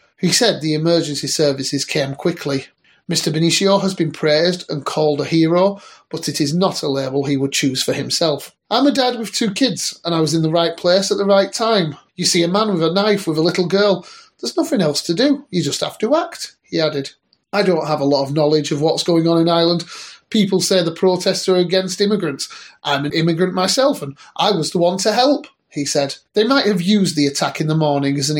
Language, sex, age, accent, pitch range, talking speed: English, male, 30-49, British, 150-190 Hz, 235 wpm